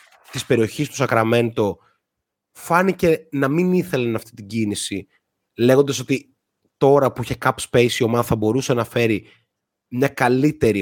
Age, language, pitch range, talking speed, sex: 30-49, Greek, 110-155 Hz, 145 wpm, male